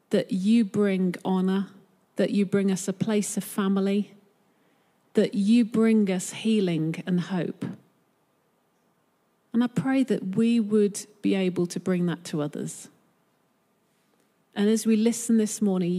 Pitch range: 195-235 Hz